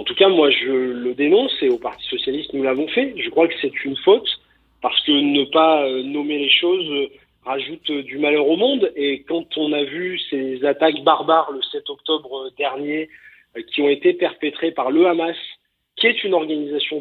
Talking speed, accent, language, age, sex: 195 wpm, French, French, 40-59, male